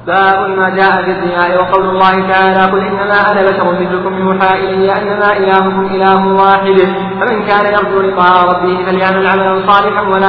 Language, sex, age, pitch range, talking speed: Arabic, male, 40-59, 190-200 Hz, 165 wpm